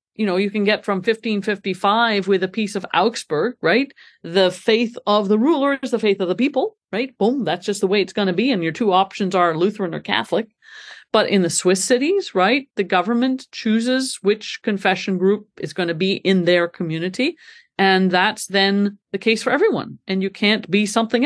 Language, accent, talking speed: English, American, 205 wpm